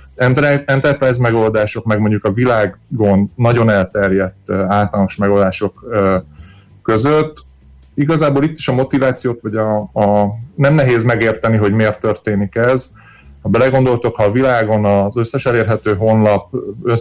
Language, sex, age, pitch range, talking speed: Hungarian, male, 30-49, 100-120 Hz, 110 wpm